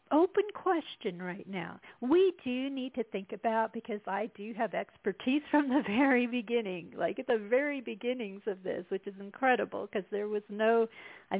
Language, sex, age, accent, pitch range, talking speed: English, female, 50-69, American, 195-245 Hz, 180 wpm